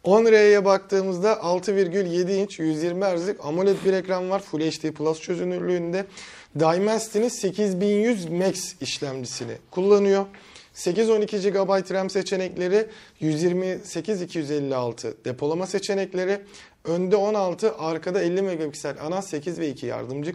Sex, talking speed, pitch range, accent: male, 105 wpm, 150-200 Hz, native